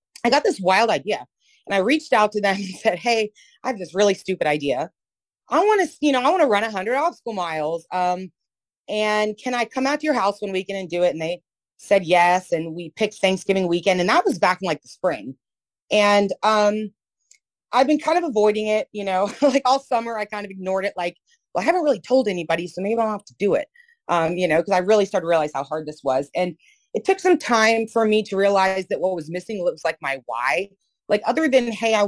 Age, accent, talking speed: 30-49, American, 245 wpm